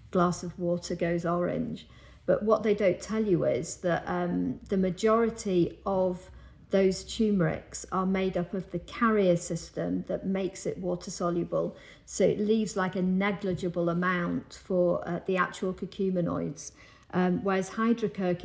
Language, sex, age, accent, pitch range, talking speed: English, female, 50-69, British, 180-210 Hz, 150 wpm